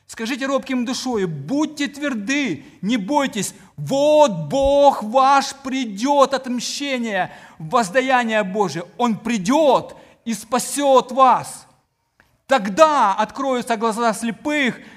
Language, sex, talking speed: Ukrainian, male, 90 wpm